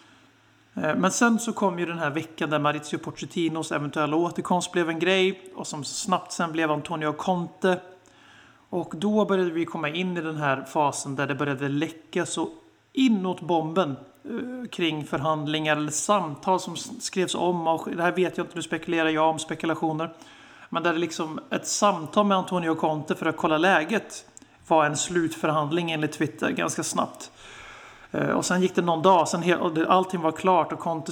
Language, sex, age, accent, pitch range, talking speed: Swedish, male, 30-49, native, 155-180 Hz, 170 wpm